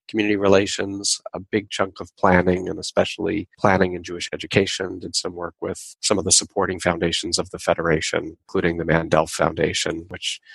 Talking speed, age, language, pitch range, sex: 170 wpm, 40-59, English, 85-100 Hz, male